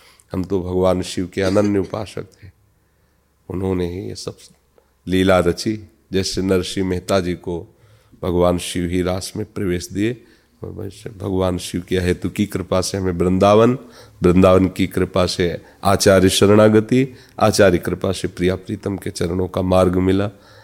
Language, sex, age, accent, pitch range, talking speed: Hindi, male, 40-59, native, 90-105 Hz, 150 wpm